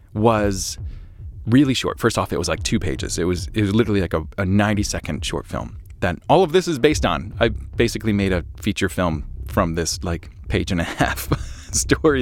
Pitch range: 85-120 Hz